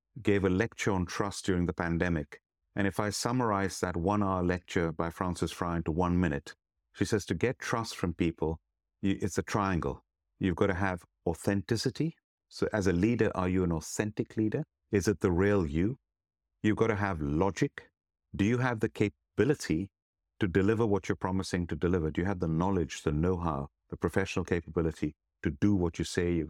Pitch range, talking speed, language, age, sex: 85-100 Hz, 190 wpm, English, 50-69, male